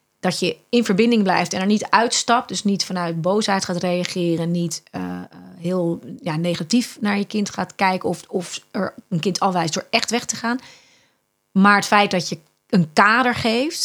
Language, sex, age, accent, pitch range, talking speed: Dutch, female, 30-49, Dutch, 175-235 Hz, 190 wpm